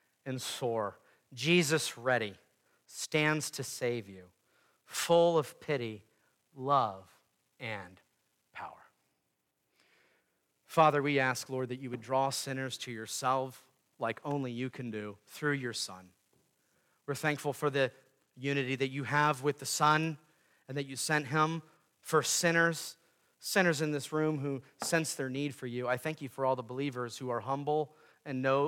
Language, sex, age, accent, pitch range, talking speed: English, male, 40-59, American, 130-165 Hz, 155 wpm